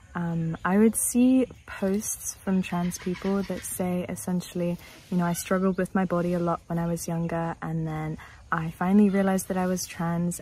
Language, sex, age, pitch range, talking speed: English, female, 20-39, 170-195 Hz, 190 wpm